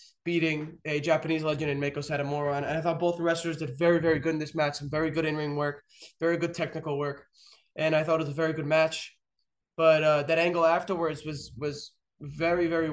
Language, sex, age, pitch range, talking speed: English, male, 20-39, 150-170 Hz, 215 wpm